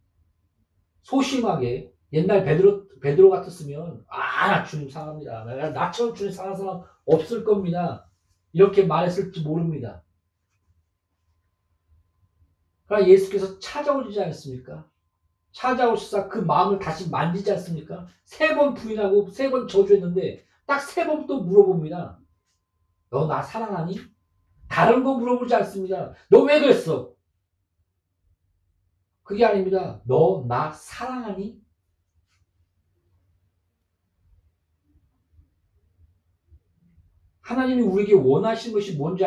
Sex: male